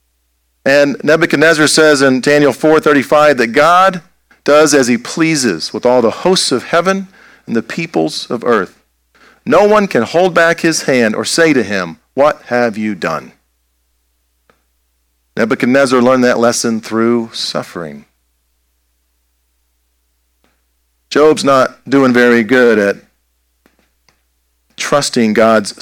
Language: English